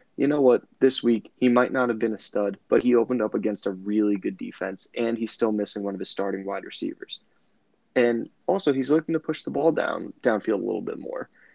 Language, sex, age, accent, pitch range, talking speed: English, male, 20-39, American, 100-120 Hz, 230 wpm